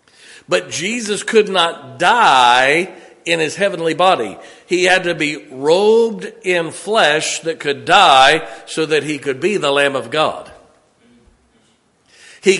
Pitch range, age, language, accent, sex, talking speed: 125-185 Hz, 50-69, English, American, male, 140 wpm